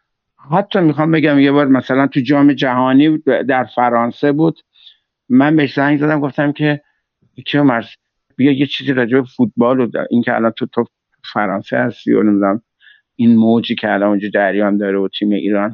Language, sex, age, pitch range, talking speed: Persian, male, 60-79, 115-145 Hz, 175 wpm